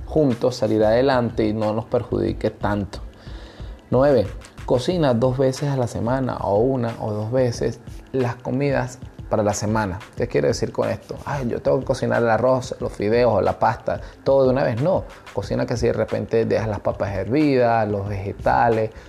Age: 20-39